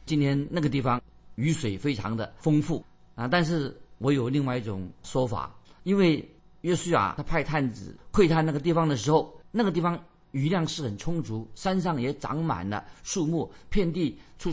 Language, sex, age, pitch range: Chinese, male, 50-69, 115-155 Hz